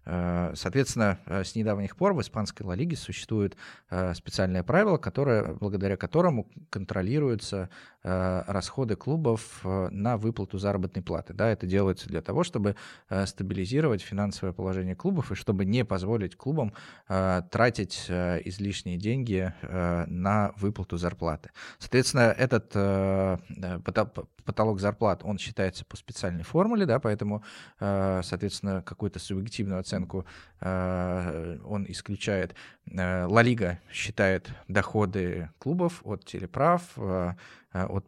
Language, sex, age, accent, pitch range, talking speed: Russian, male, 20-39, native, 90-110 Hz, 105 wpm